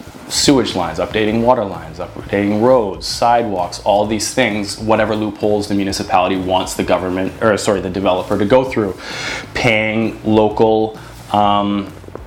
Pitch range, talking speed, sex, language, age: 95-120 Hz, 135 wpm, male, English, 30-49